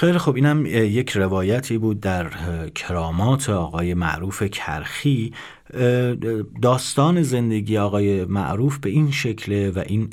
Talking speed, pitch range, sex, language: 115 wpm, 85-125 Hz, male, Persian